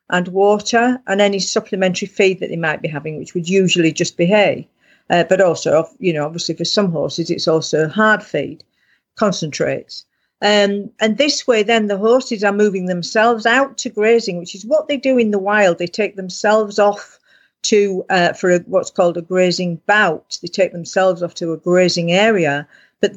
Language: English